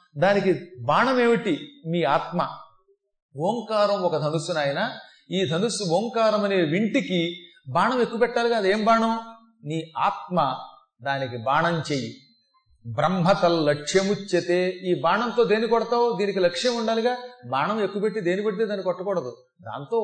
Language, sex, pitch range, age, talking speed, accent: Telugu, male, 165-225 Hz, 40-59, 120 wpm, native